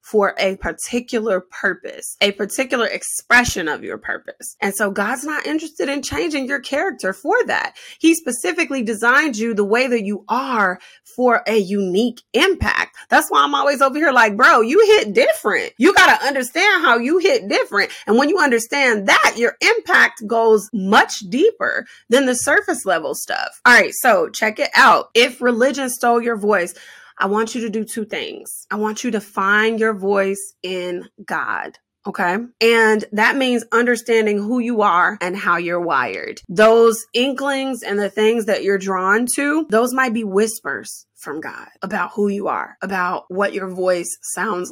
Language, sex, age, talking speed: English, female, 20-39, 175 wpm